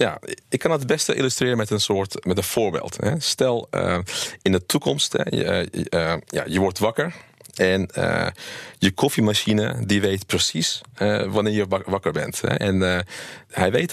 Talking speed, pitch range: 135 wpm, 95-110 Hz